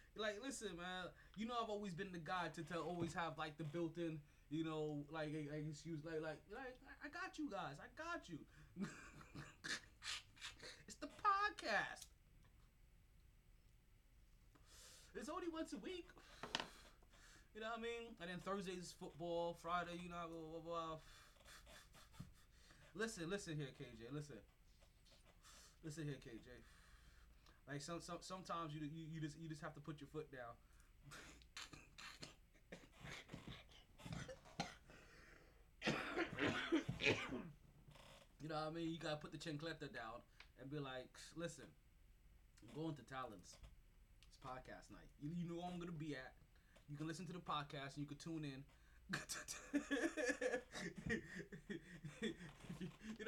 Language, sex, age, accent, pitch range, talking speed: English, male, 20-39, American, 150-195 Hz, 135 wpm